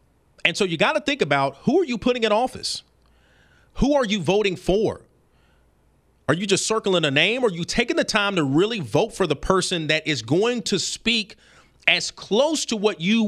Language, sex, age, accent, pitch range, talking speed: English, male, 40-59, American, 150-210 Hz, 205 wpm